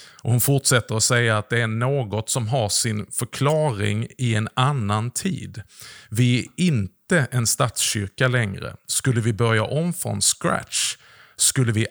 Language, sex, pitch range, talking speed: Swedish, male, 110-135 Hz, 155 wpm